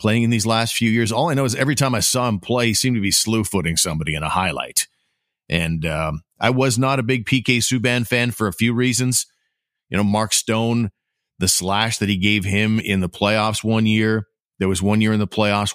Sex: male